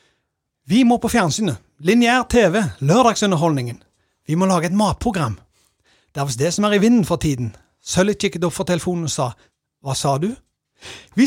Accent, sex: Swedish, male